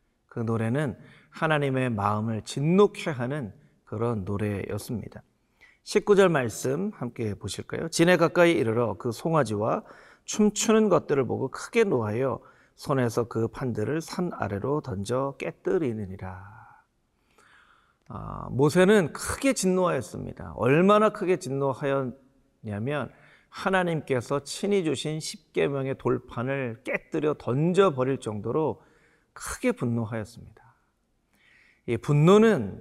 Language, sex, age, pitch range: Korean, male, 40-59, 115-175 Hz